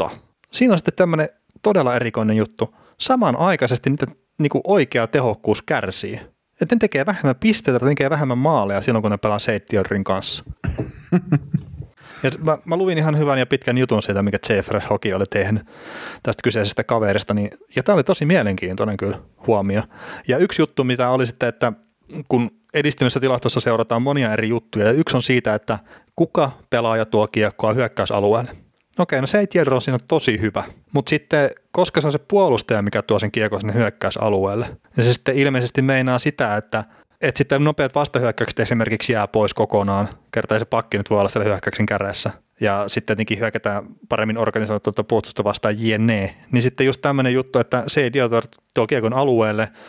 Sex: male